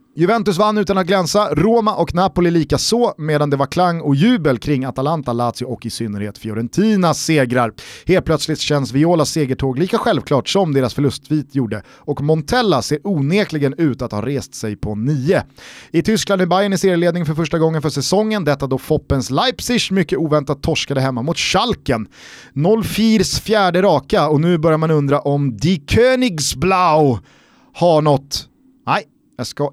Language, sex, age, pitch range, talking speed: Swedish, male, 30-49, 135-190 Hz, 170 wpm